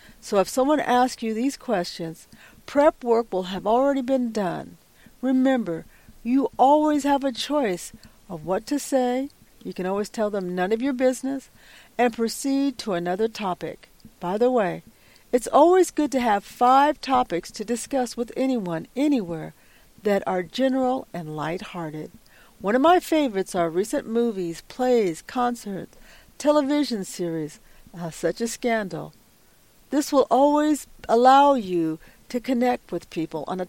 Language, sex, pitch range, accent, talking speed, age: English, female, 185-265 Hz, American, 150 wpm, 50-69